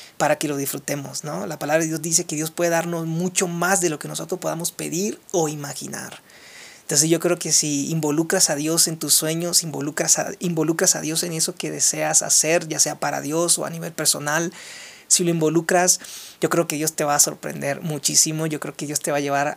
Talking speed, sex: 225 wpm, male